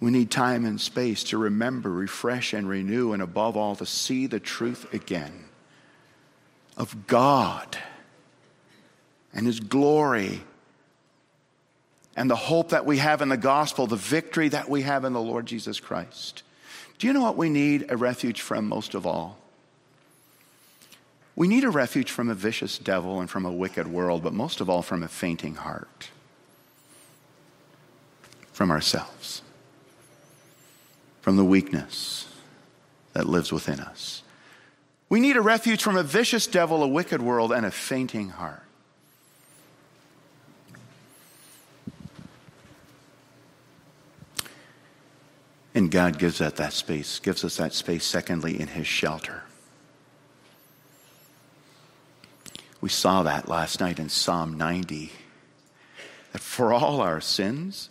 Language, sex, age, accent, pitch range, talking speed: English, male, 50-69, American, 95-145 Hz, 130 wpm